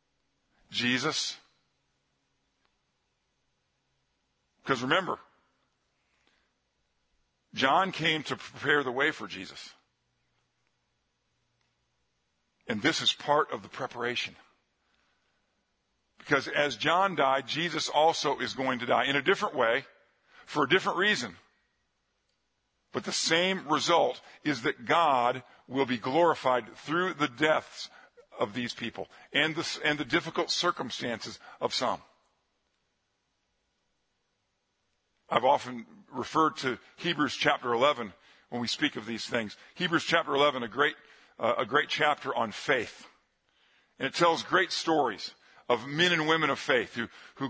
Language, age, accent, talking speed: English, 50-69, American, 125 wpm